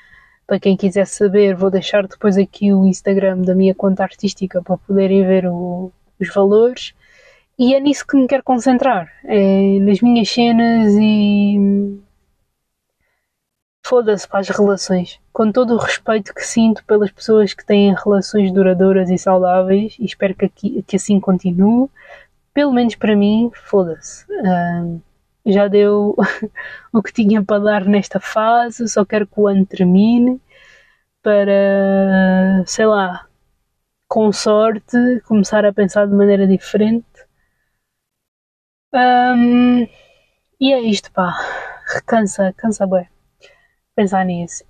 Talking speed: 130 wpm